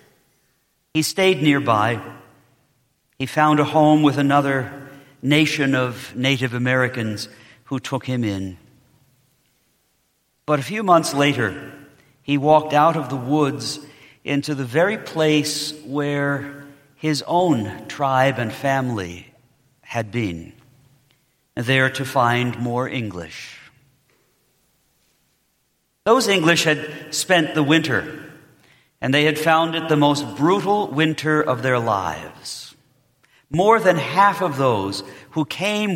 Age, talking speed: 50-69, 115 wpm